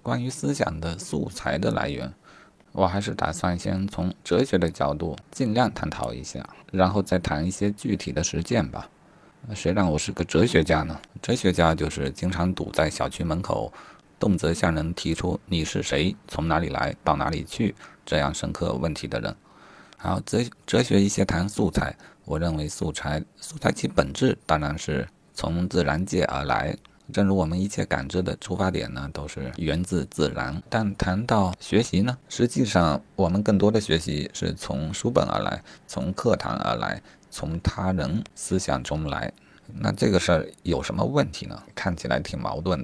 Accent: native